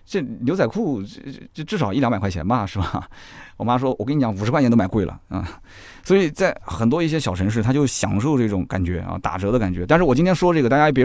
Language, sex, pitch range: Chinese, male, 105-155 Hz